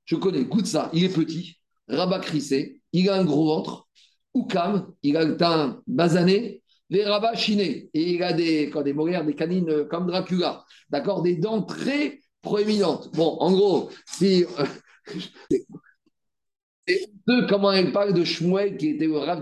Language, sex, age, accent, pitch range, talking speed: French, male, 50-69, French, 155-200 Hz, 170 wpm